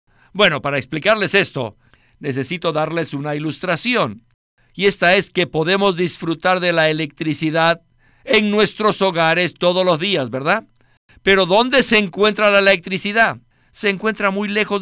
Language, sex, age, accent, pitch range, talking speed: Spanish, male, 50-69, Mexican, 135-195 Hz, 140 wpm